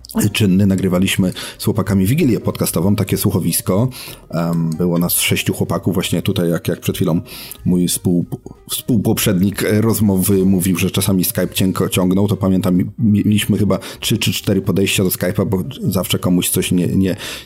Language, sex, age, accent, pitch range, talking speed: Polish, male, 40-59, native, 90-110 Hz, 140 wpm